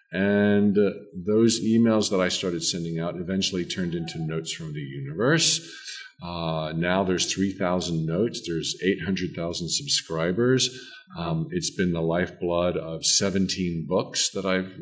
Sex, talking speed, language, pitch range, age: male, 140 wpm, English, 85-105 Hz, 50-69